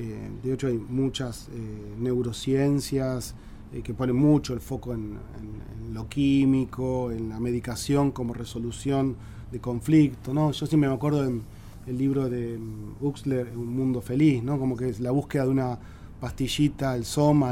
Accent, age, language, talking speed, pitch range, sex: Argentinian, 30-49, Spanish, 165 wpm, 120-150 Hz, male